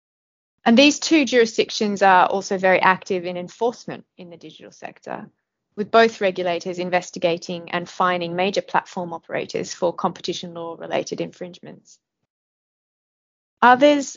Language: English